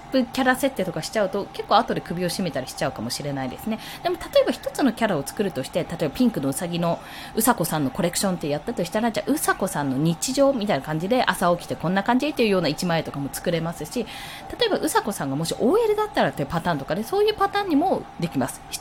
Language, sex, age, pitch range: Japanese, female, 20-39, 170-275 Hz